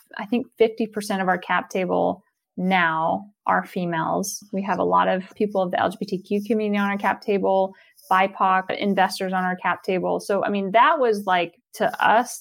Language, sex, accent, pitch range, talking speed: English, female, American, 180-215 Hz, 185 wpm